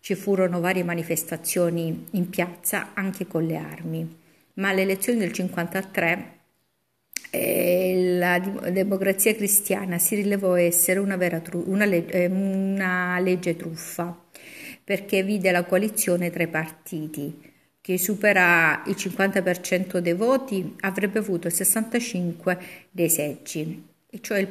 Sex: female